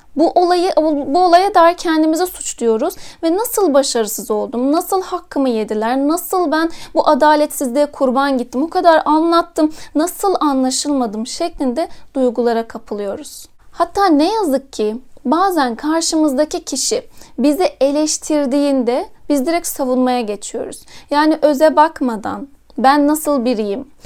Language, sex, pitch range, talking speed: Turkish, female, 265-325 Hz, 115 wpm